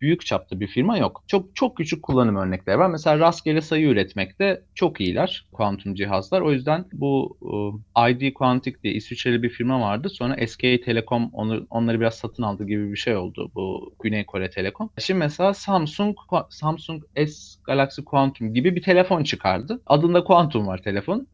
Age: 40-59